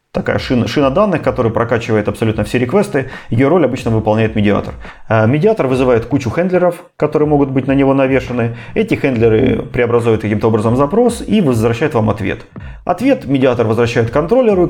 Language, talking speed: Russian, 165 wpm